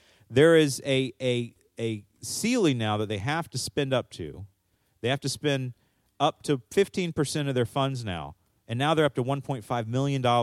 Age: 30-49